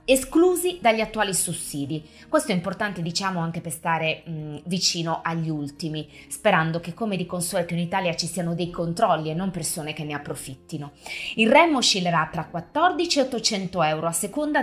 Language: Italian